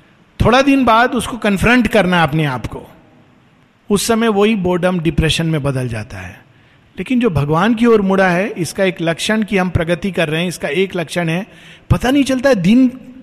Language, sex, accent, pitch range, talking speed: Hindi, male, native, 160-210 Hz, 200 wpm